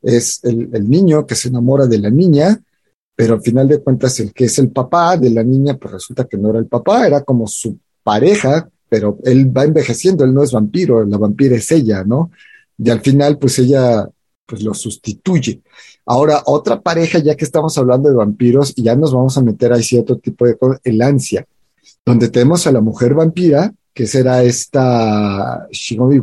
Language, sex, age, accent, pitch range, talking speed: Spanish, male, 40-59, Mexican, 115-145 Hz, 200 wpm